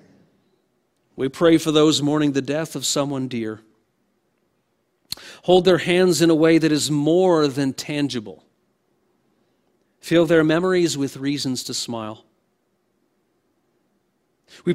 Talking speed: 120 wpm